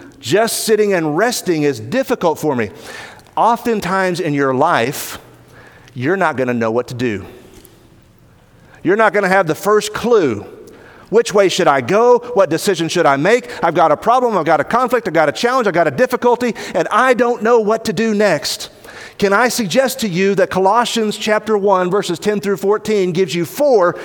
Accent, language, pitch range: American, English, 165-230 Hz